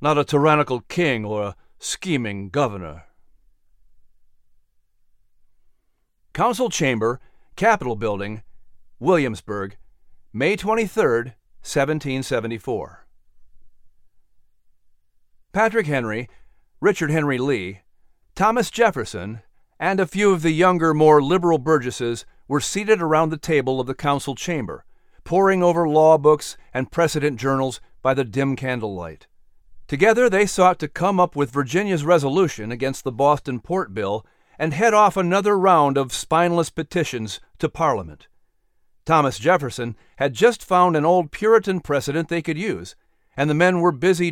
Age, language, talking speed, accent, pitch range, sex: 40-59, English, 125 wpm, American, 115-175 Hz, male